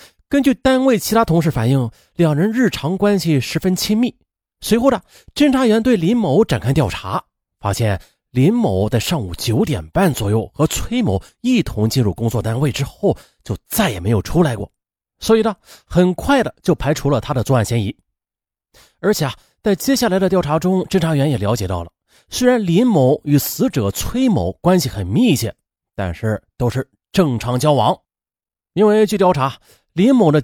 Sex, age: male, 30-49